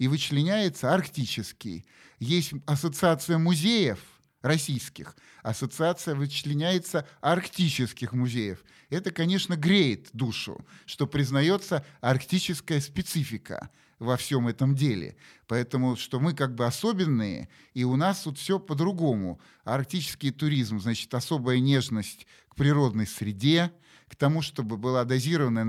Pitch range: 125-155 Hz